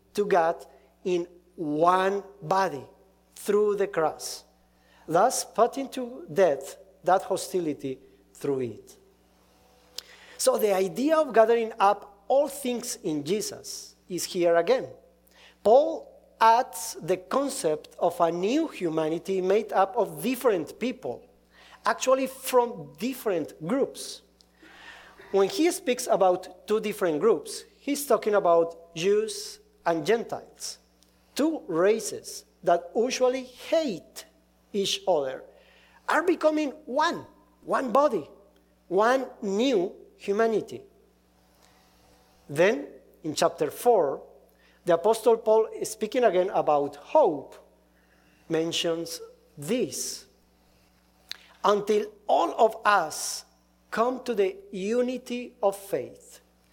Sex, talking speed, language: male, 105 wpm, English